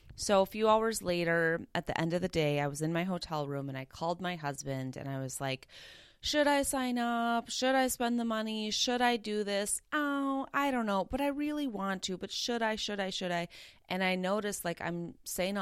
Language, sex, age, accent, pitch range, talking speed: English, female, 30-49, American, 155-200 Hz, 235 wpm